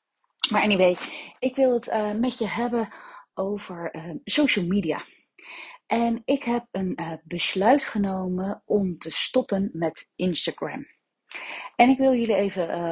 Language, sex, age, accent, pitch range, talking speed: Dutch, female, 30-49, Dutch, 185-235 Hz, 140 wpm